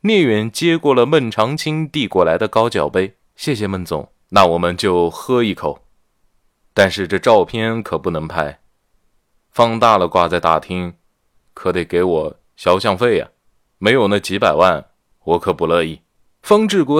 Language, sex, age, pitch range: Chinese, male, 20-39, 85-135 Hz